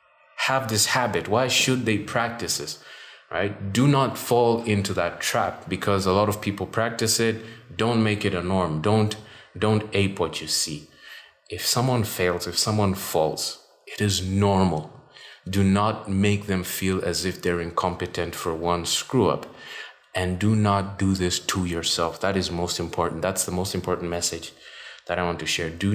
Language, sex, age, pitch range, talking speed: English, male, 30-49, 85-105 Hz, 180 wpm